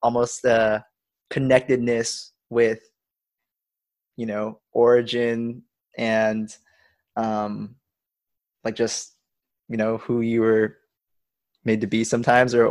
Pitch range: 115-125 Hz